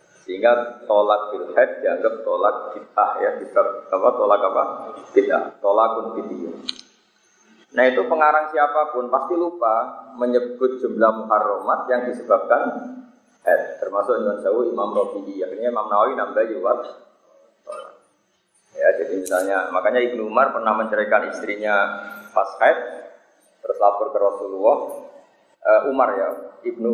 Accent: native